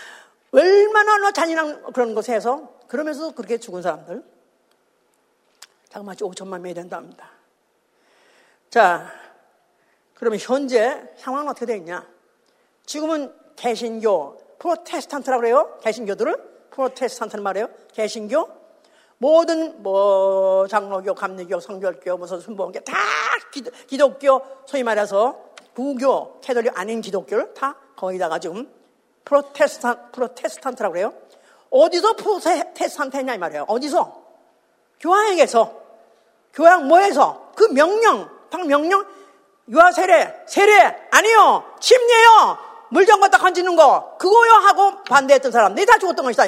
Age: 50-69